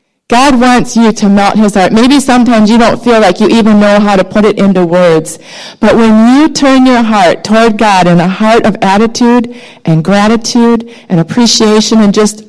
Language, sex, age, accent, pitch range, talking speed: English, female, 40-59, American, 195-235 Hz, 195 wpm